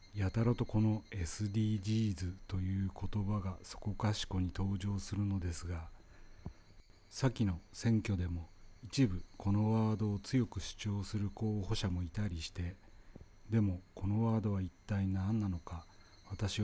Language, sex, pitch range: Japanese, male, 90-105 Hz